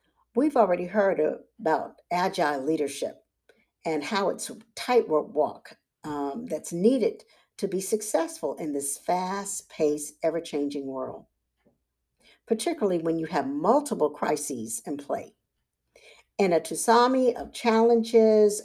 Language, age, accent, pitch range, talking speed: English, 50-69, American, 150-225 Hz, 120 wpm